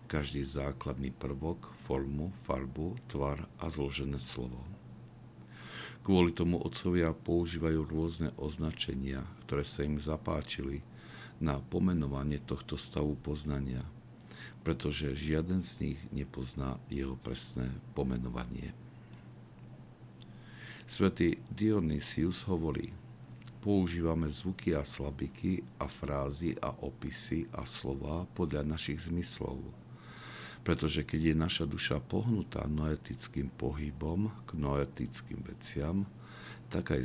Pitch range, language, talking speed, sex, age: 70-85 Hz, Slovak, 100 wpm, male, 60-79